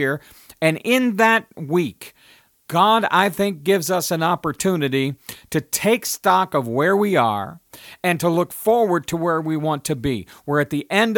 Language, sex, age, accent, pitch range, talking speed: English, male, 50-69, American, 150-195 Hz, 170 wpm